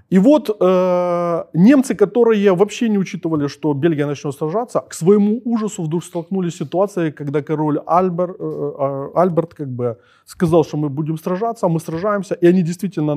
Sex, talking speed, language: male, 165 wpm, Ukrainian